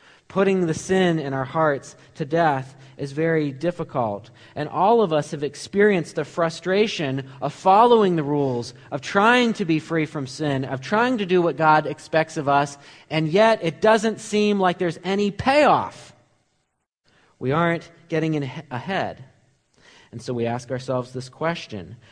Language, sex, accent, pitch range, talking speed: English, male, American, 135-195 Hz, 165 wpm